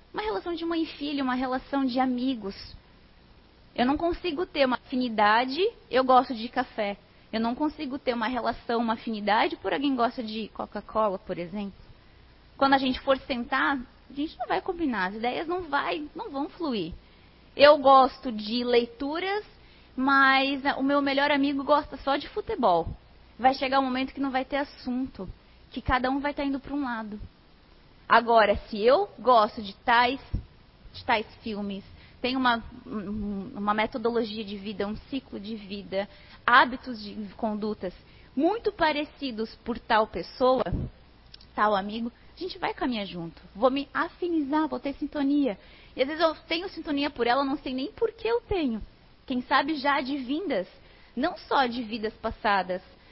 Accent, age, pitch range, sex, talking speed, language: Brazilian, 20-39, 225-290 Hz, female, 165 wpm, Portuguese